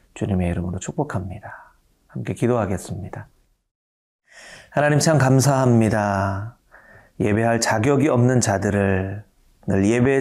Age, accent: 30-49, native